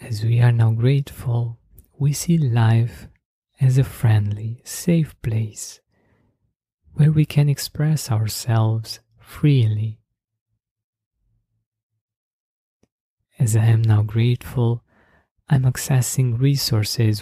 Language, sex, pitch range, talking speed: English, male, 110-125 Hz, 95 wpm